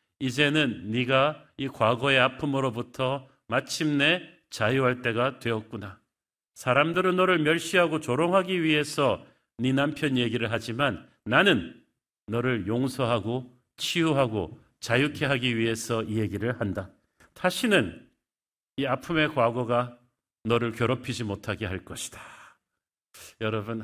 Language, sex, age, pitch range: Korean, male, 40-59, 120-150 Hz